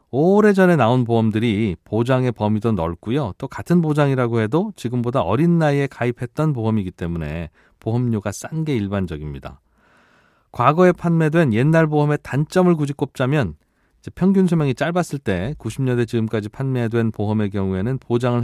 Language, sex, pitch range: Korean, male, 105-145 Hz